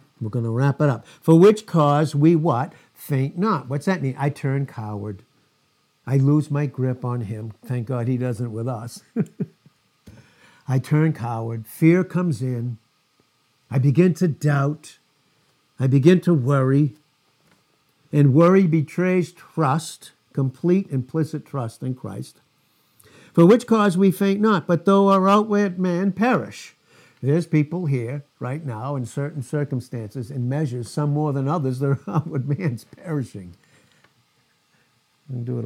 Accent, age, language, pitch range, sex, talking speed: American, 60-79, English, 130-170 Hz, male, 150 wpm